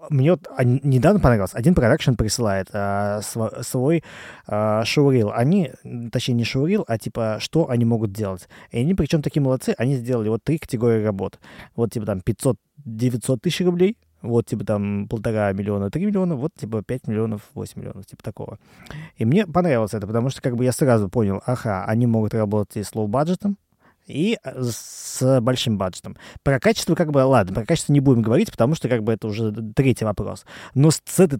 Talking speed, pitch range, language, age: 185 wpm, 110-150 Hz, Russian, 20-39